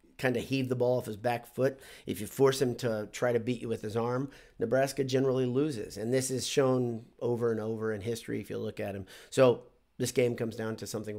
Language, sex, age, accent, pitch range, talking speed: English, male, 40-59, American, 110-130 Hz, 240 wpm